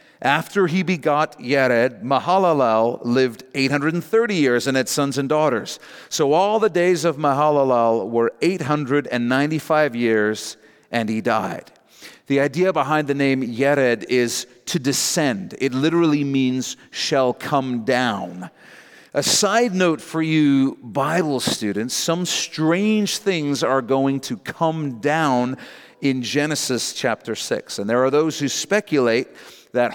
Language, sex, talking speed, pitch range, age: English, male, 130 wpm, 125-165 Hz, 40-59